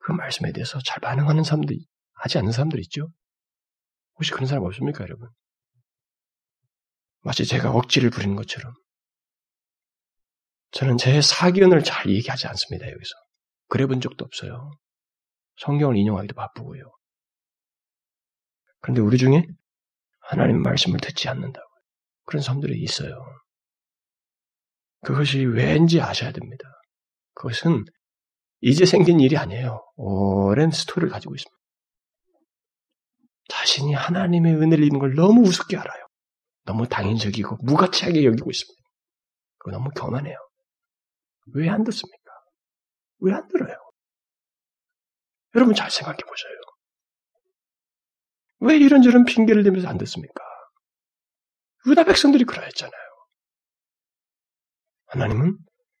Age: 30-49